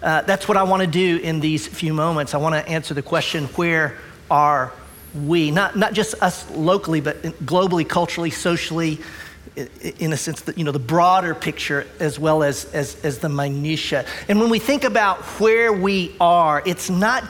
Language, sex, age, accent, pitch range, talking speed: English, male, 40-59, American, 155-195 Hz, 175 wpm